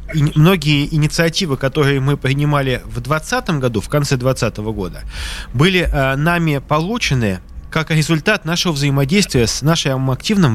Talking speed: 135 wpm